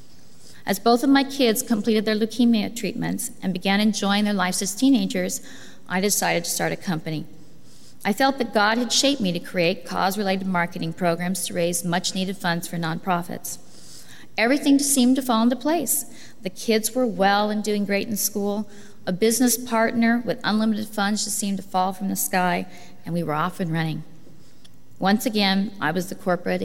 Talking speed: 180 wpm